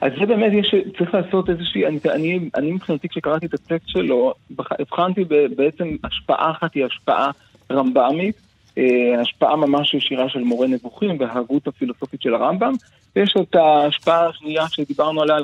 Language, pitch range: Hebrew, 135-190 Hz